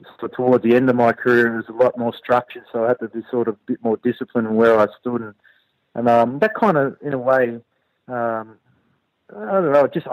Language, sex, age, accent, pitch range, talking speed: English, male, 30-49, Australian, 115-135 Hz, 250 wpm